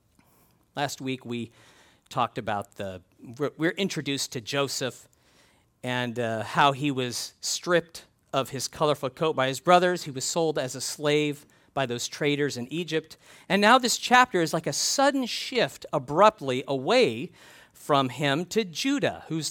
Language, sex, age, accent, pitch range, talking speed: English, male, 40-59, American, 125-170 Hz, 155 wpm